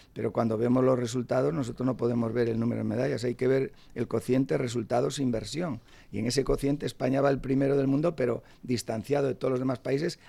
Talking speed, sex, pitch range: 215 wpm, male, 115-135 Hz